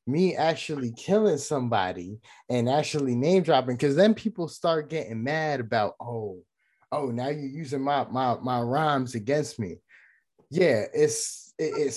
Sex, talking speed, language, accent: male, 140 wpm, English, American